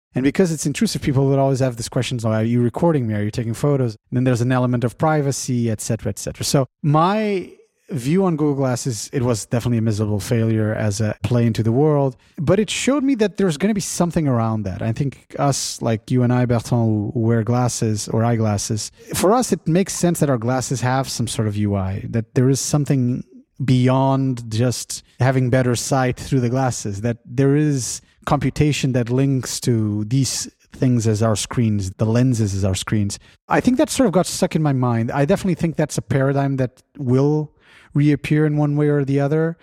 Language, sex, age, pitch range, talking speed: English, male, 30-49, 115-145 Hz, 215 wpm